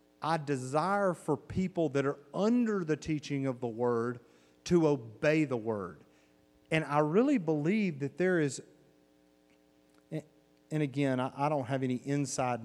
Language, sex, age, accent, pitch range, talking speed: English, male, 40-59, American, 100-155 Hz, 140 wpm